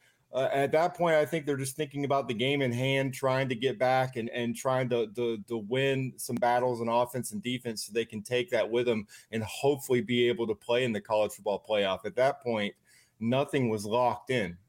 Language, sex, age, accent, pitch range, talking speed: English, male, 30-49, American, 110-135 Hz, 230 wpm